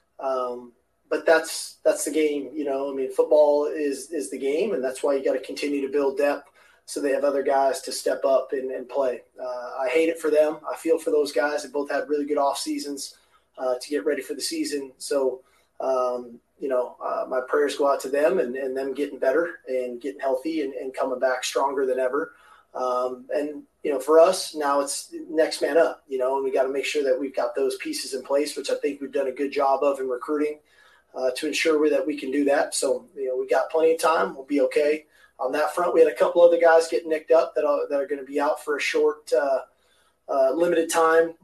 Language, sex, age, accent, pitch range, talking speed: English, male, 20-39, American, 135-165 Hz, 250 wpm